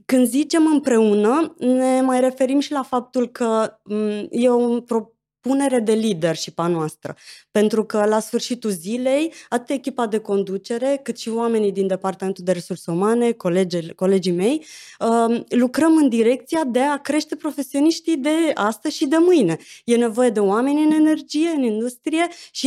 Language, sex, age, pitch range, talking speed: Romanian, female, 20-39, 210-275 Hz, 155 wpm